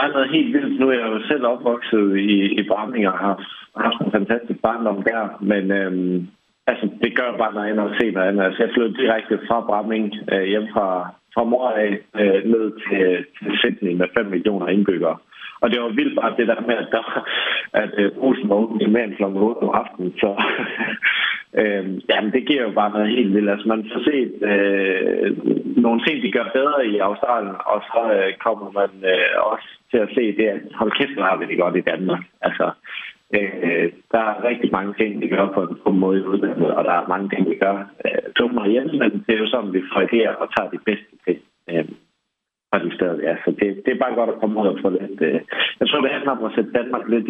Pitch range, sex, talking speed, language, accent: 100-115 Hz, male, 225 wpm, Danish, native